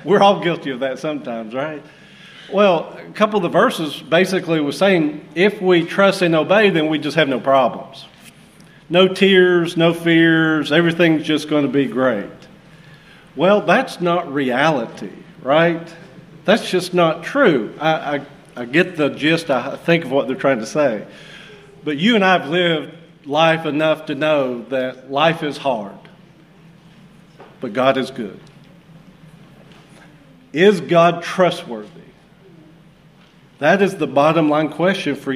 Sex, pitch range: male, 150-175 Hz